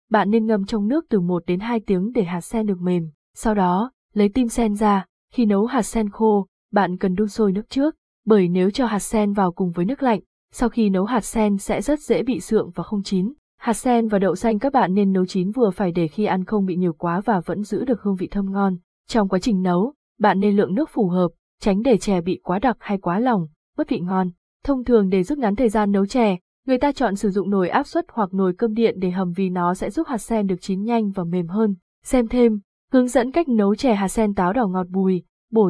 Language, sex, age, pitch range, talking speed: Vietnamese, female, 20-39, 190-240 Hz, 255 wpm